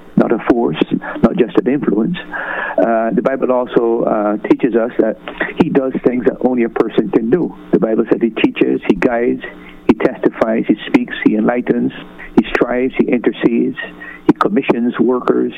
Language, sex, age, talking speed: English, male, 60-79, 170 wpm